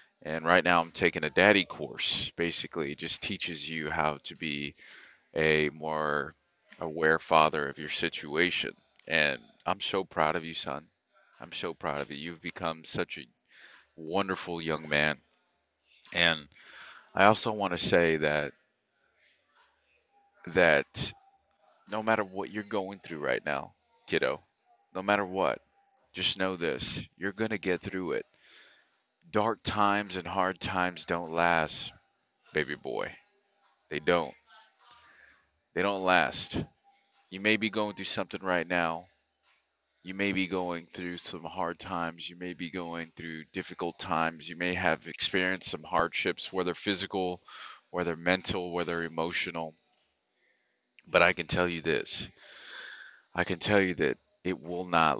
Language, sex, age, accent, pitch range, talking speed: English, male, 30-49, American, 80-100 Hz, 145 wpm